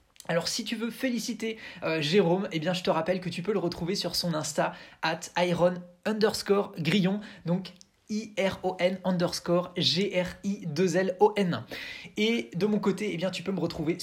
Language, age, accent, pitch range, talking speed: French, 20-39, French, 165-200 Hz, 165 wpm